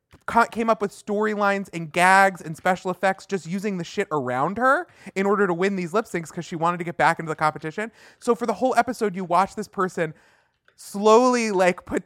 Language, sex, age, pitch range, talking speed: English, male, 20-39, 145-195 Hz, 215 wpm